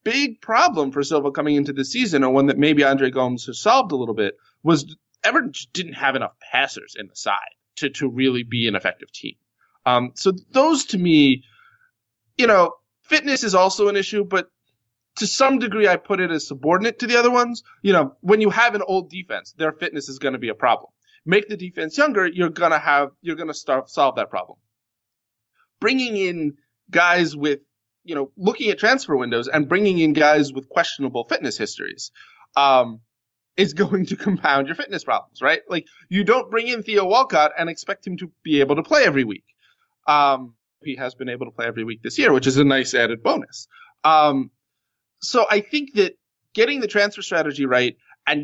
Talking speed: 200 wpm